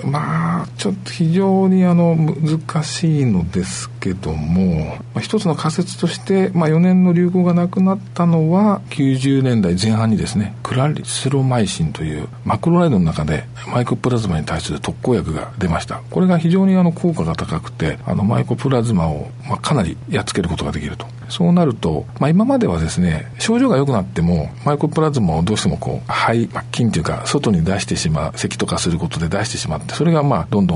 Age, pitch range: 50-69, 95-160 Hz